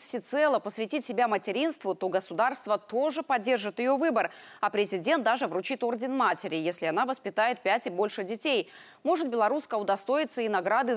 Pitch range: 205-275 Hz